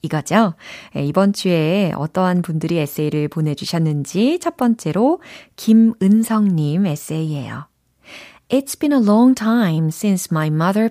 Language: Korean